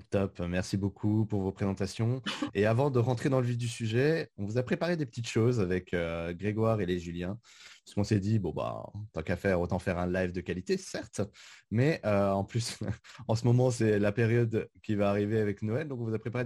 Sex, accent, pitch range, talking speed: male, French, 90-115 Hz, 235 wpm